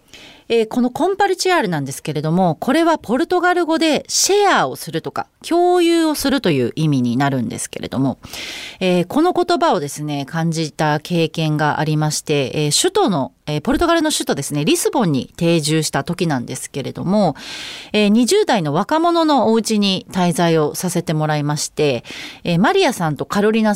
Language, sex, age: Japanese, female, 40-59